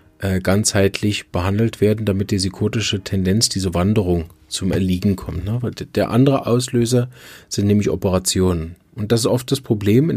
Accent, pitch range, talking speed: German, 95-115 Hz, 150 wpm